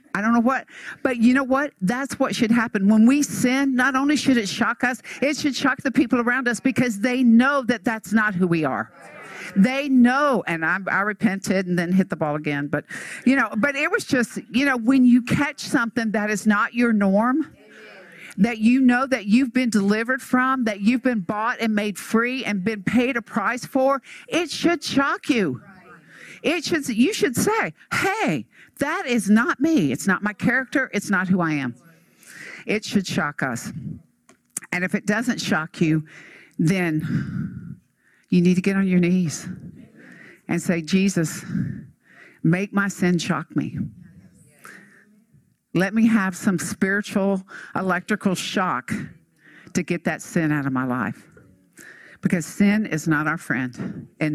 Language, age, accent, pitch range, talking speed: English, 50-69, American, 180-255 Hz, 175 wpm